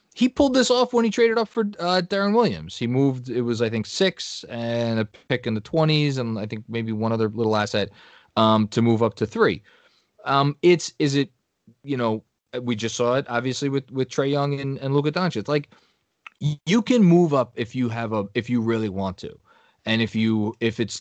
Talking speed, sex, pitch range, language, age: 225 wpm, male, 105-140 Hz, English, 20-39